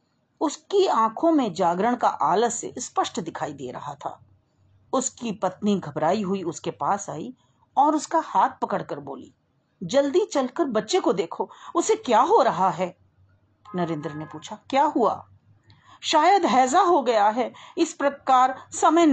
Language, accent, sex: Hindi, native, female